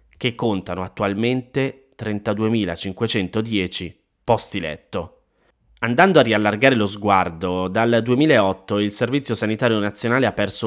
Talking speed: 105 wpm